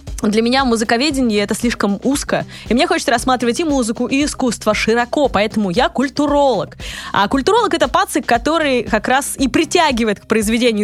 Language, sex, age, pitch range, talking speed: Russian, female, 20-39, 215-295 Hz, 160 wpm